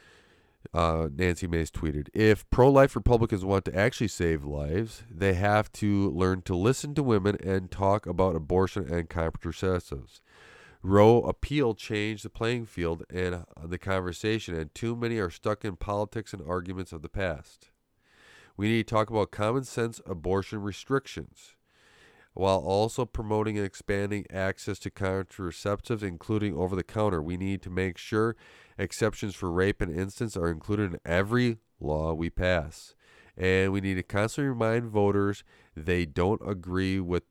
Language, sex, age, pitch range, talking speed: English, male, 40-59, 85-110 Hz, 155 wpm